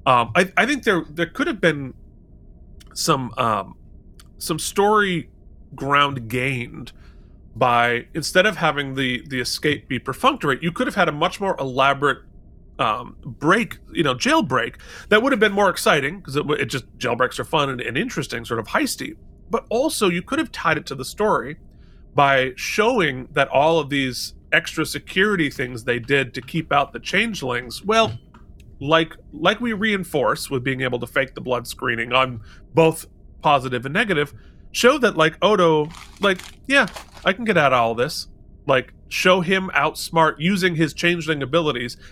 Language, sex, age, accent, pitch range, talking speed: English, male, 30-49, American, 125-180 Hz, 170 wpm